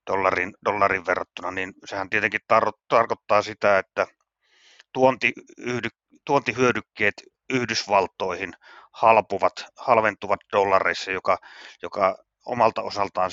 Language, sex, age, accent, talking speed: Finnish, male, 30-49, native, 95 wpm